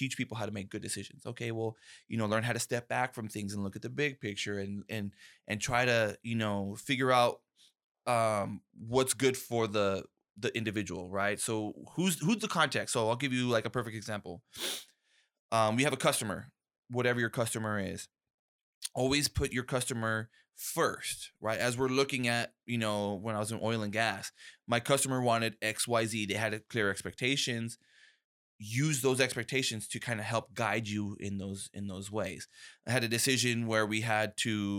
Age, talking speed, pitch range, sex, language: 20-39, 200 wpm, 105-125 Hz, male, English